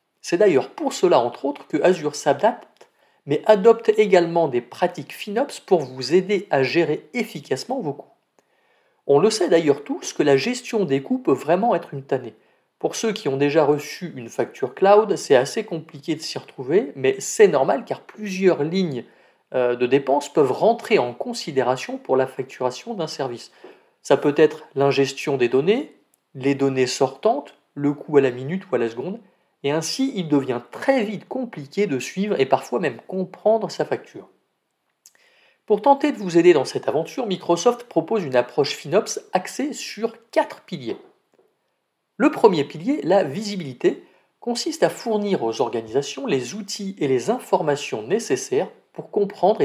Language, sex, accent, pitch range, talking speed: French, male, French, 140-225 Hz, 165 wpm